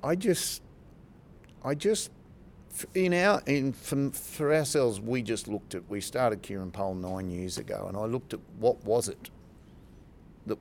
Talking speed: 165 wpm